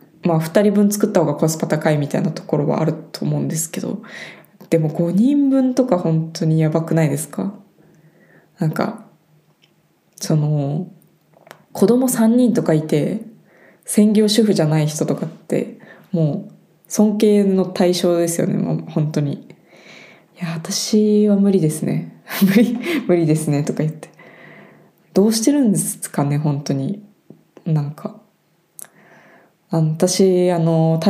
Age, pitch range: 20-39, 160-205 Hz